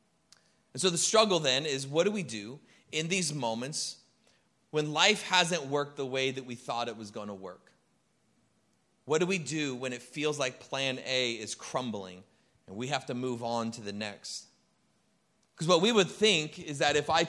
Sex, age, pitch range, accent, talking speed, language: male, 30-49, 120-155 Hz, American, 200 wpm, English